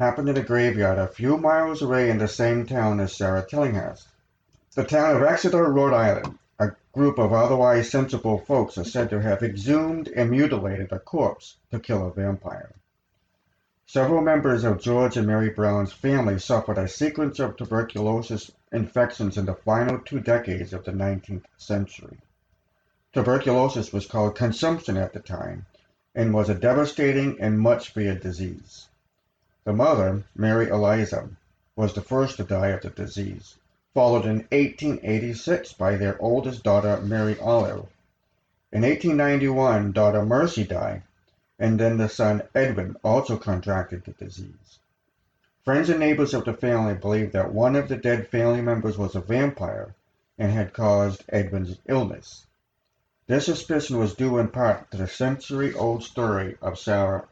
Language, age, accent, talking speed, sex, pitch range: English, 50-69, American, 155 wpm, male, 100-125 Hz